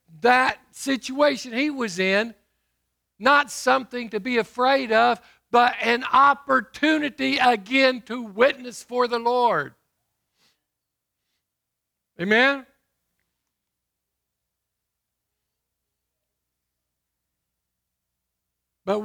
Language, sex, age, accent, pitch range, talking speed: English, male, 60-79, American, 145-240 Hz, 70 wpm